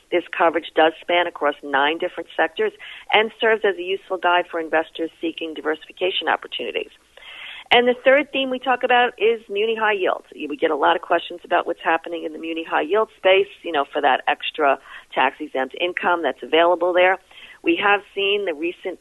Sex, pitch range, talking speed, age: female, 155-225 Hz, 190 wpm, 40-59